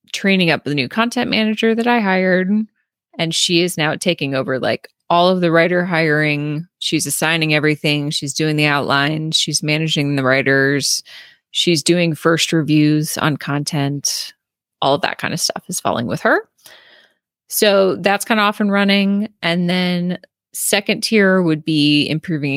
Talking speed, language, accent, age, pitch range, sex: 165 wpm, English, American, 30-49, 145-185 Hz, female